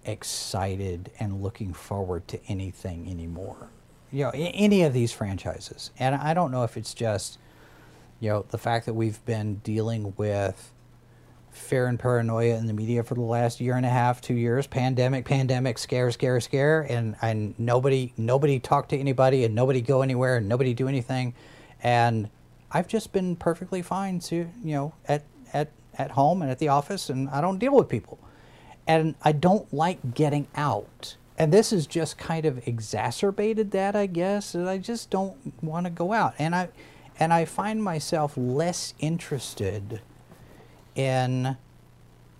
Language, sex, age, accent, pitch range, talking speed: English, male, 40-59, American, 115-155 Hz, 170 wpm